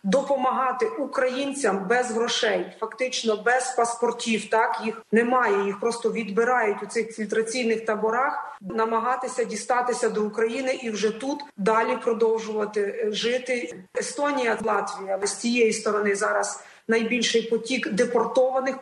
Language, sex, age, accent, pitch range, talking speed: Ukrainian, female, 30-49, native, 200-250 Hz, 115 wpm